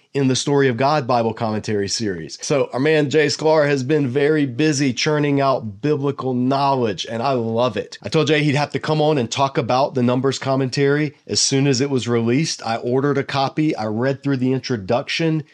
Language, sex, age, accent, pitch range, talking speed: English, male, 30-49, American, 115-140 Hz, 210 wpm